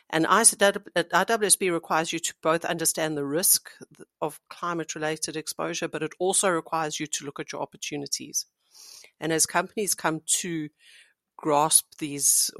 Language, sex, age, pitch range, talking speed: English, female, 60-79, 145-165 Hz, 140 wpm